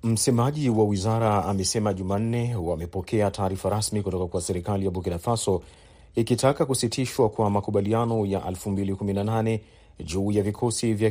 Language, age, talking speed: Swahili, 40-59, 130 wpm